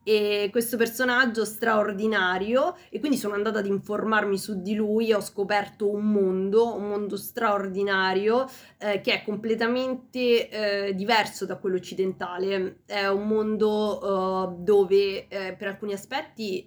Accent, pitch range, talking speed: native, 195-230 Hz, 135 wpm